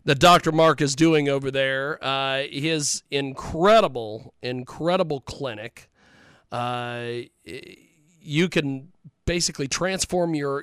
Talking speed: 100 wpm